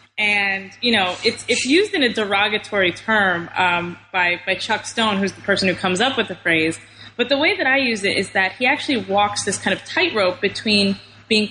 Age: 20-39